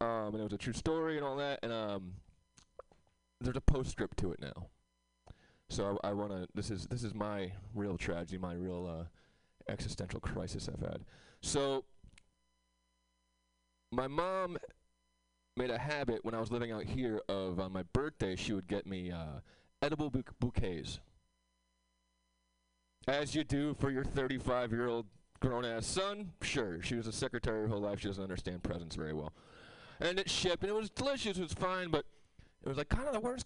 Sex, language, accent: male, English, American